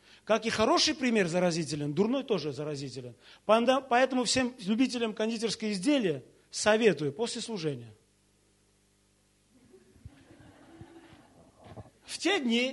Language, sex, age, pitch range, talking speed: Russian, male, 40-59, 165-250 Hz, 90 wpm